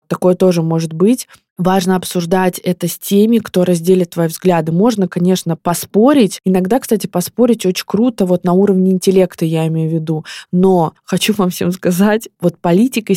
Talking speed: 165 wpm